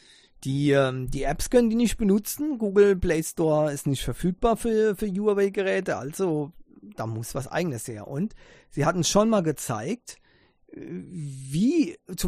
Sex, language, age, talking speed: male, English, 40-59, 145 wpm